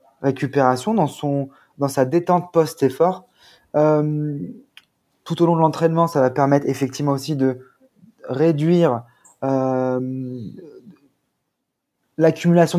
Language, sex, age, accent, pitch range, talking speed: French, male, 20-39, French, 130-150 Hz, 95 wpm